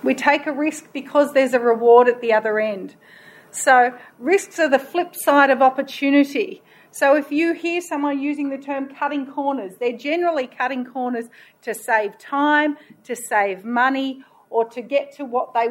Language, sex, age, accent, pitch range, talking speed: English, female, 40-59, Australian, 245-310 Hz, 175 wpm